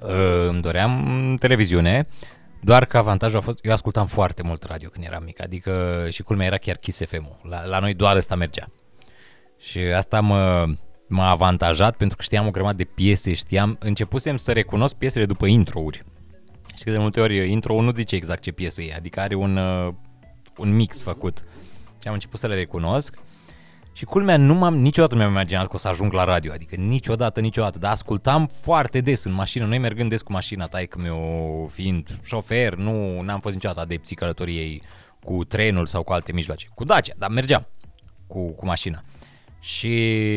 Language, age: Romanian, 20-39